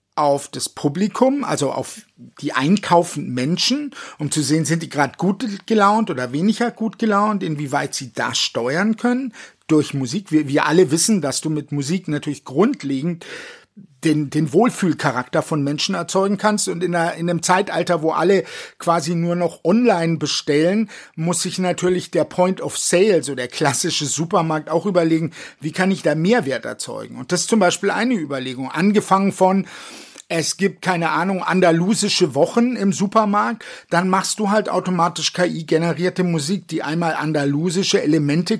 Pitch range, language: 160-205 Hz, German